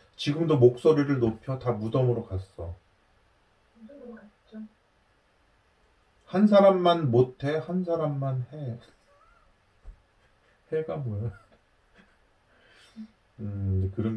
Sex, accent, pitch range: male, native, 110-160 Hz